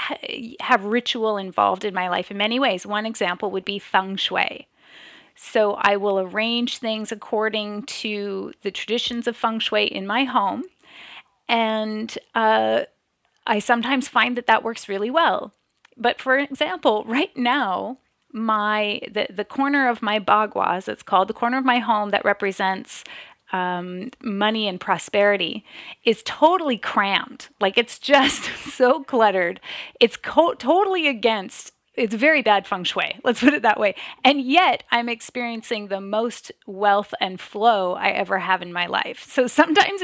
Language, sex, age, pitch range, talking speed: English, female, 30-49, 210-270 Hz, 155 wpm